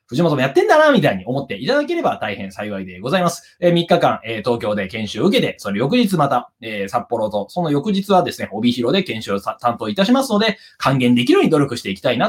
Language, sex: Japanese, male